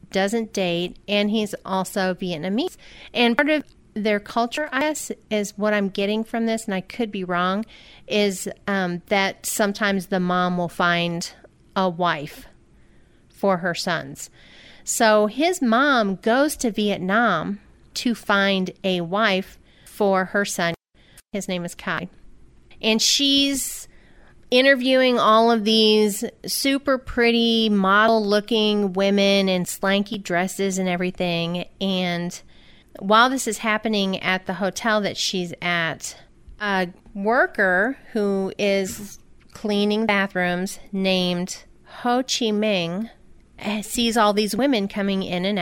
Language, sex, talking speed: English, female, 130 wpm